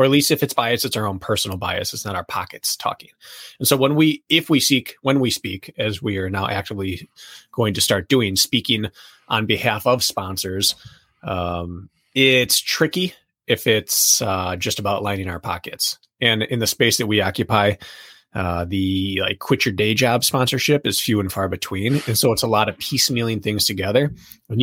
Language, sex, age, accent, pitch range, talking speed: English, male, 20-39, American, 100-125 Hz, 195 wpm